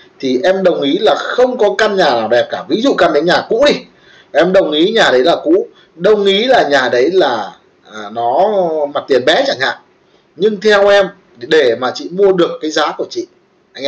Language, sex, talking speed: Vietnamese, male, 225 wpm